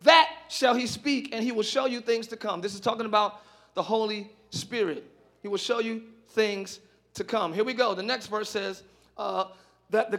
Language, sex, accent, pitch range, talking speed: English, male, American, 200-260 Hz, 210 wpm